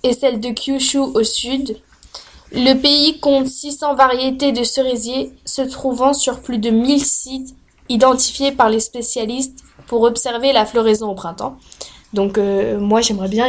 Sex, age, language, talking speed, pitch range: female, 10-29, French, 155 wpm, 225-275 Hz